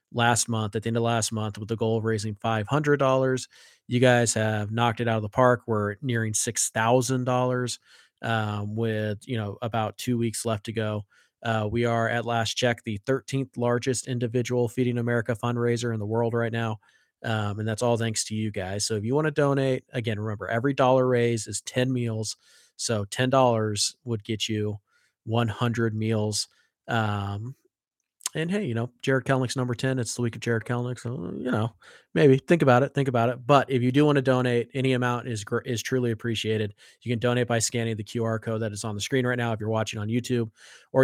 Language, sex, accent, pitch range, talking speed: English, male, American, 110-125 Hz, 210 wpm